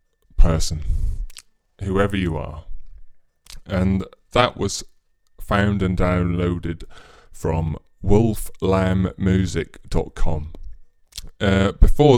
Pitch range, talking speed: 85-115 Hz, 65 wpm